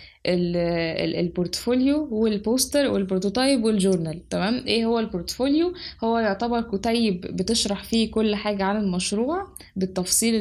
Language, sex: Arabic, female